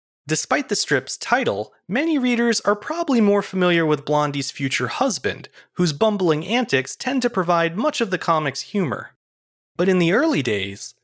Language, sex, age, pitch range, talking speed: English, male, 30-49, 145-220 Hz, 165 wpm